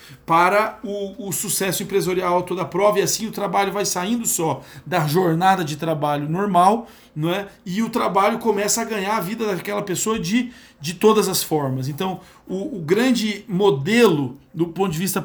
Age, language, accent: 40-59, Portuguese, Brazilian